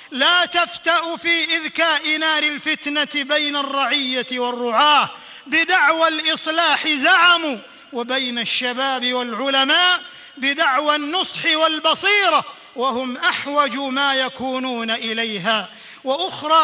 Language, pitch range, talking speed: Arabic, 255-320 Hz, 85 wpm